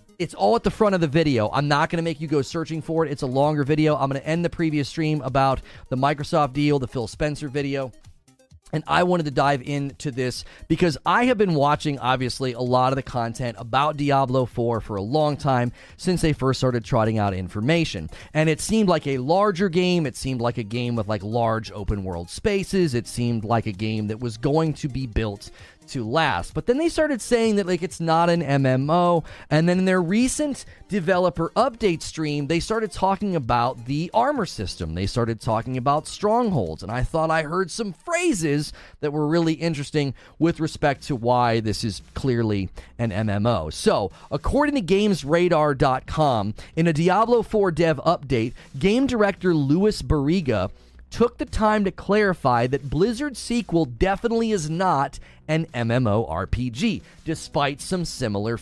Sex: male